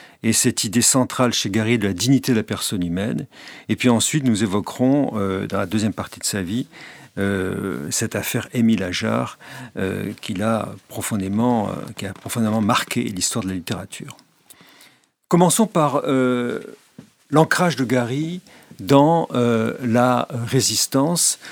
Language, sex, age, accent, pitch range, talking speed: French, male, 50-69, French, 110-135 Hz, 145 wpm